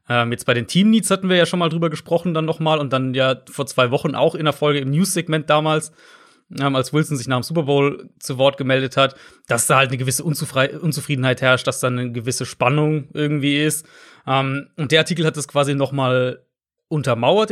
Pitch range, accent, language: 130-160 Hz, German, German